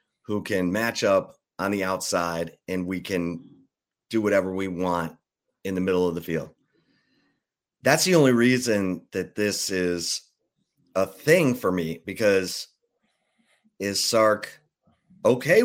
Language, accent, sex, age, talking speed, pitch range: English, American, male, 30-49, 135 wpm, 95-130 Hz